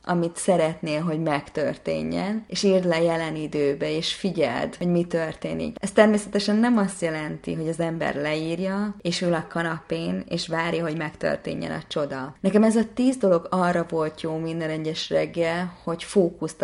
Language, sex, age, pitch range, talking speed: Hungarian, female, 20-39, 155-175 Hz, 165 wpm